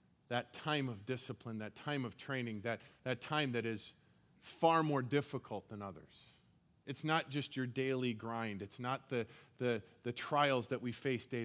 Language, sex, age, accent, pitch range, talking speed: English, male, 40-59, American, 115-150 Hz, 175 wpm